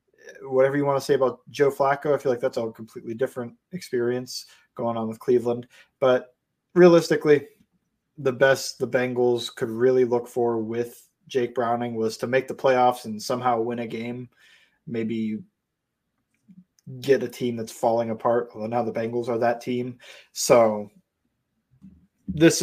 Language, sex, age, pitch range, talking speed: English, male, 20-39, 115-140 Hz, 155 wpm